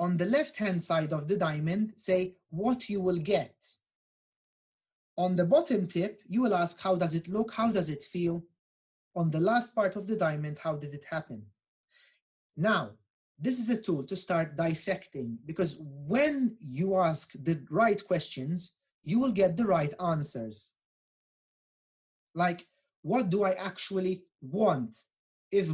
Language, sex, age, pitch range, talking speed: Italian, male, 30-49, 155-210 Hz, 155 wpm